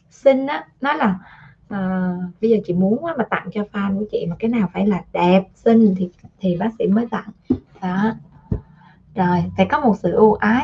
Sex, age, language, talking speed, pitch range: female, 20-39, Vietnamese, 210 wpm, 185-225 Hz